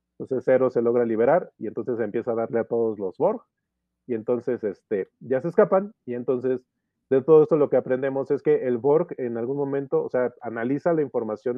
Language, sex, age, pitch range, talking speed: Spanish, male, 30-49, 115-145 Hz, 205 wpm